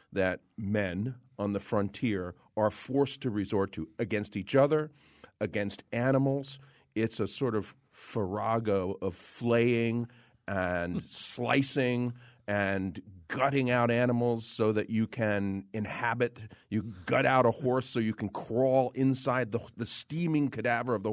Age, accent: 40-59, American